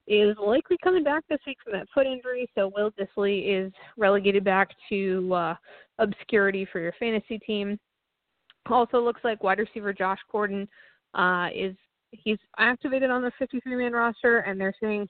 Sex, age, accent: female, 20-39, American